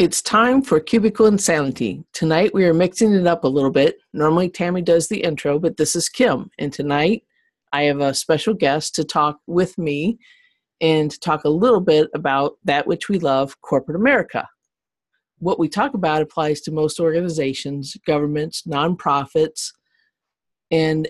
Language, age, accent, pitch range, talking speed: English, 50-69, American, 145-185 Hz, 165 wpm